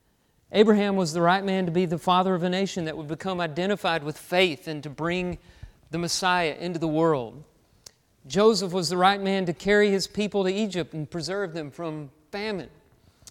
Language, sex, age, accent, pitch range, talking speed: English, male, 40-59, American, 165-200 Hz, 190 wpm